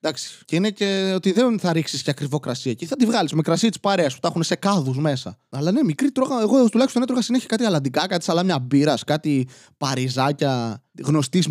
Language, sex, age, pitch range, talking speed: Greek, male, 20-39, 140-190 Hz, 215 wpm